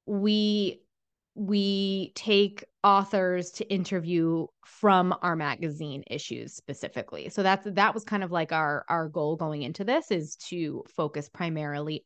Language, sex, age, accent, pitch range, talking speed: English, female, 20-39, American, 165-200 Hz, 140 wpm